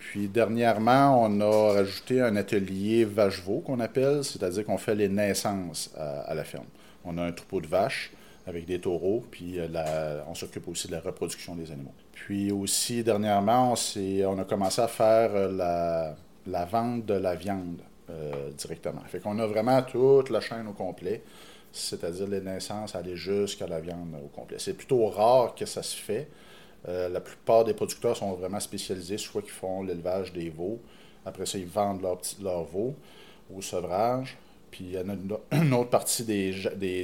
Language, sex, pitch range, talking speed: French, male, 85-105 Hz, 185 wpm